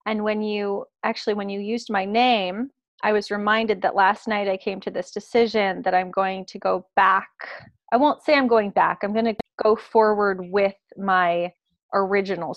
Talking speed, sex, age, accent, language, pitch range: 190 wpm, female, 30-49, American, English, 185-220 Hz